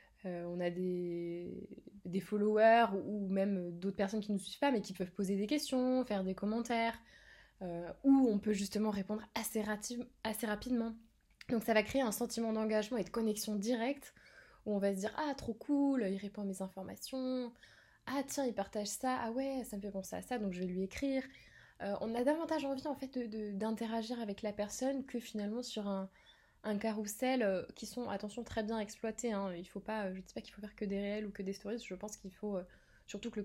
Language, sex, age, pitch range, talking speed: French, female, 20-39, 200-240 Hz, 235 wpm